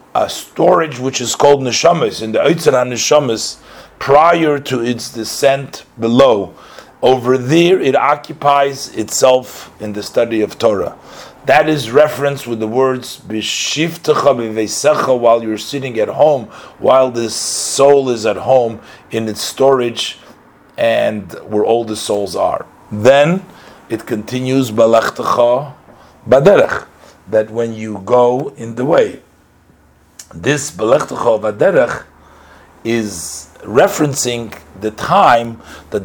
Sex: male